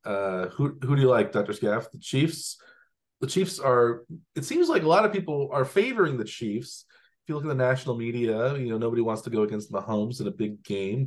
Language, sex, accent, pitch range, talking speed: English, male, American, 95-135 Hz, 235 wpm